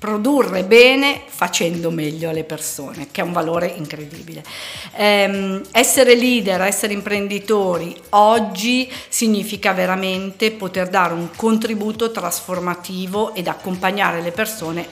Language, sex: Italian, female